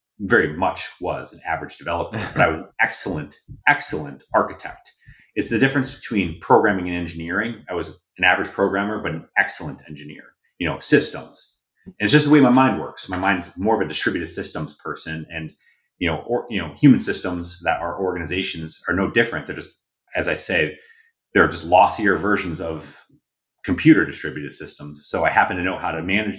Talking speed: 190 wpm